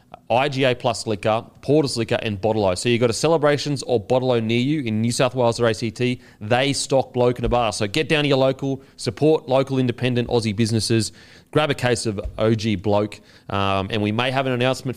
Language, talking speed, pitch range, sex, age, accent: English, 210 wpm, 105-135 Hz, male, 30-49, Australian